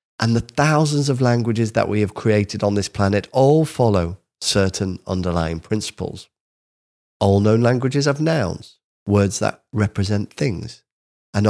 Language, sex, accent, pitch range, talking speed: English, male, British, 95-125 Hz, 140 wpm